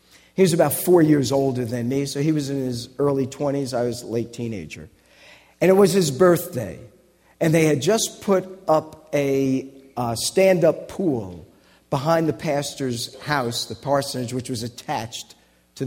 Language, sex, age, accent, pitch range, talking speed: English, male, 50-69, American, 120-160 Hz, 170 wpm